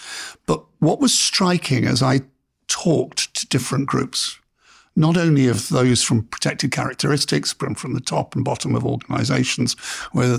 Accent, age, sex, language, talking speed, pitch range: British, 60-79, male, English, 150 wpm, 125-160 Hz